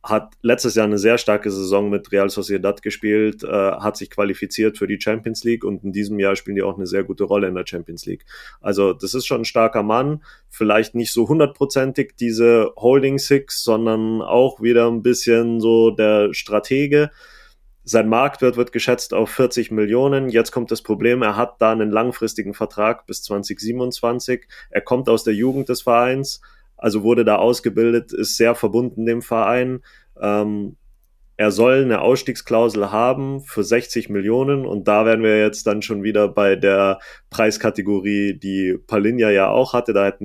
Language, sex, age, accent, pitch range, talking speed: German, male, 30-49, German, 105-120 Hz, 175 wpm